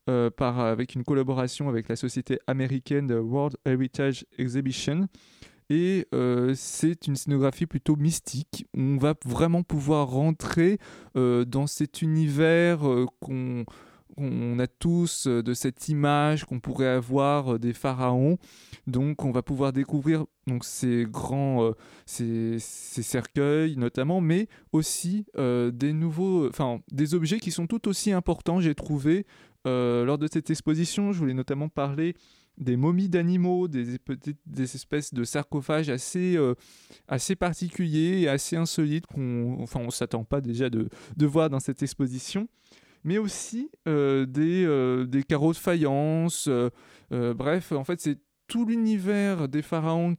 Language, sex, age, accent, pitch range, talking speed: French, male, 20-39, French, 130-165 Hz, 155 wpm